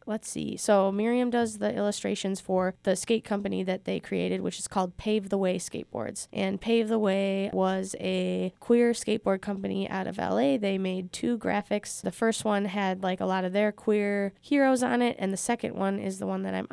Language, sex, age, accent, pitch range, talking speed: English, female, 20-39, American, 185-210 Hz, 210 wpm